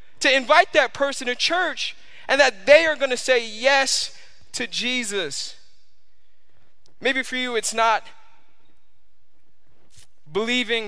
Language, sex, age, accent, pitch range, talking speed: English, male, 20-39, American, 165-220 Hz, 115 wpm